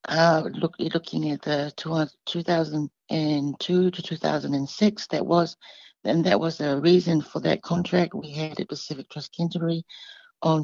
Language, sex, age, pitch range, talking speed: English, female, 60-79, 150-185 Hz, 140 wpm